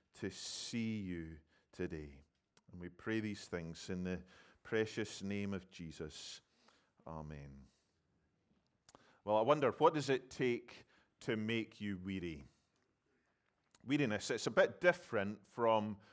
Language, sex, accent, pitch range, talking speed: English, male, British, 100-125 Hz, 125 wpm